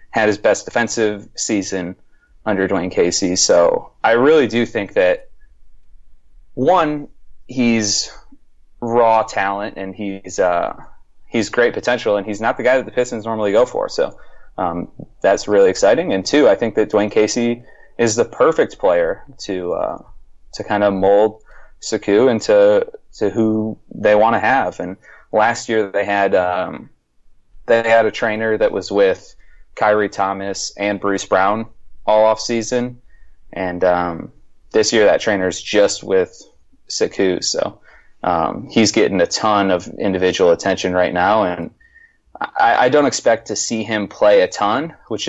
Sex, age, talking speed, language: male, 20-39, 160 wpm, English